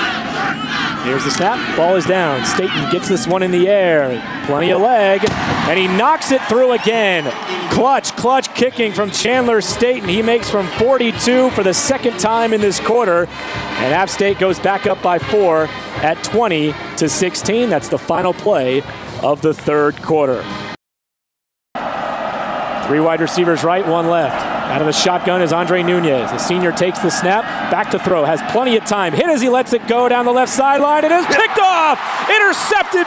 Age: 30-49